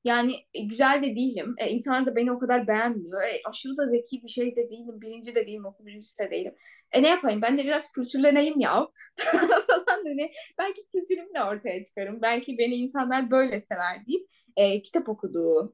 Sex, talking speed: female, 190 wpm